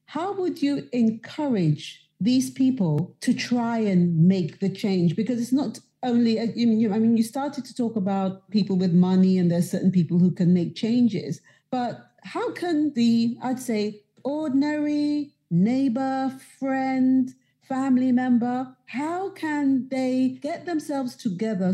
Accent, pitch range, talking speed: British, 185-255 Hz, 140 wpm